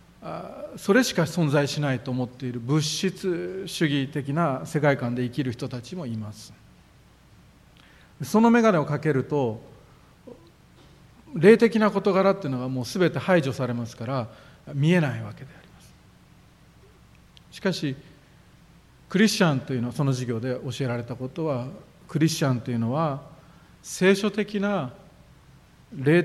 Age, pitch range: 40-59, 125-165 Hz